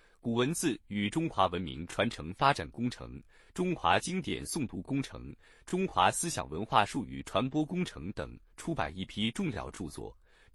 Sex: male